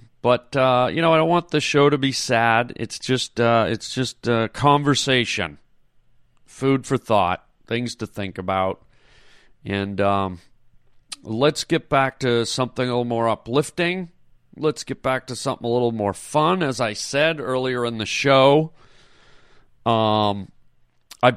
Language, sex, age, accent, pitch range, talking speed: English, male, 40-59, American, 105-130 Hz, 155 wpm